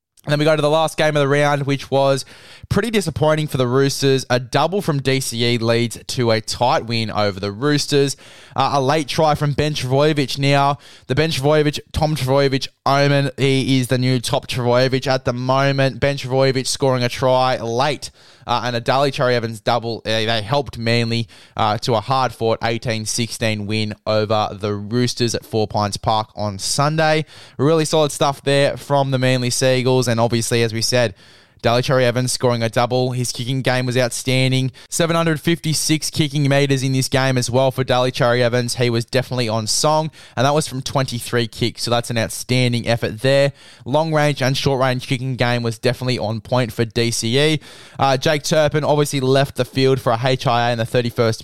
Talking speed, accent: 190 wpm, Australian